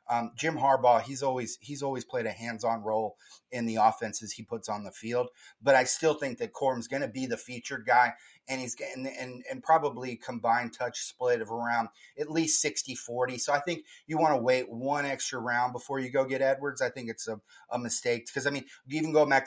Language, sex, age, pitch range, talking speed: English, male, 30-49, 120-140 Hz, 225 wpm